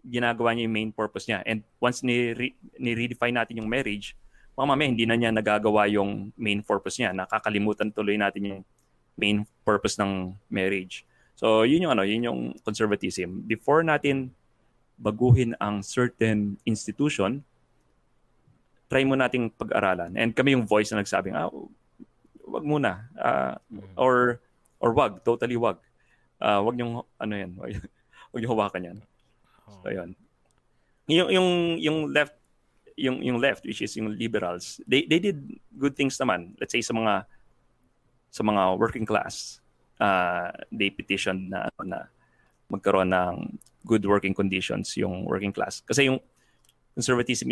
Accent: native